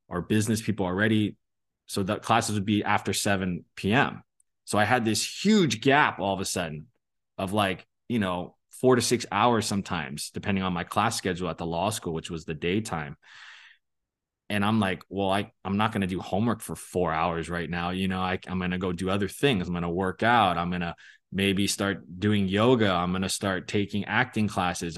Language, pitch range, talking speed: English, 95-115 Hz, 210 wpm